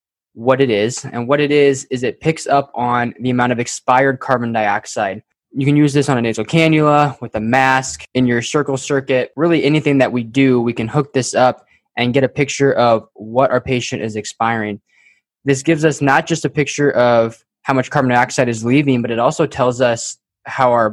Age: 20-39